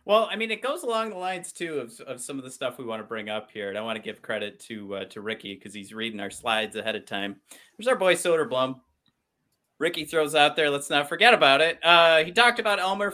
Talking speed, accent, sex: 265 wpm, American, male